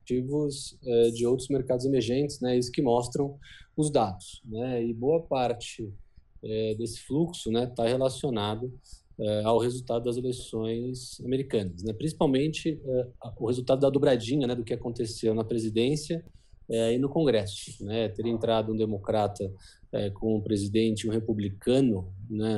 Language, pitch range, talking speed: Portuguese, 105-125 Hz, 150 wpm